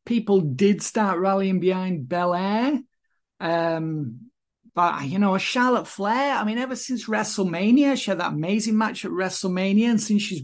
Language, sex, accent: English, male, British